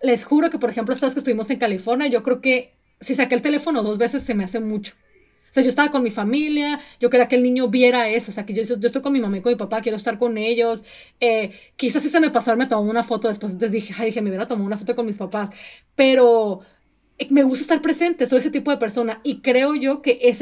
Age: 30-49